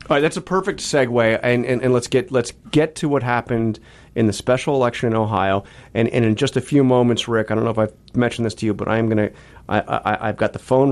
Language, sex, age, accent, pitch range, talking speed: English, male, 30-49, American, 95-115 Hz, 270 wpm